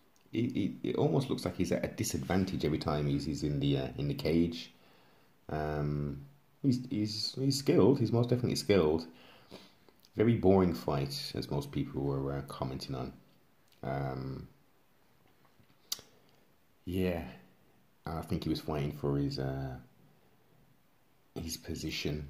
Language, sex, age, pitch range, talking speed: English, male, 30-49, 70-95 Hz, 135 wpm